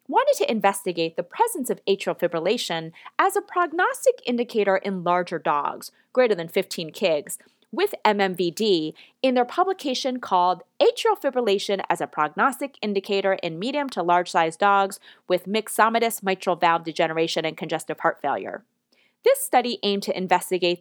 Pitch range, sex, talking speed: 175-255 Hz, female, 145 wpm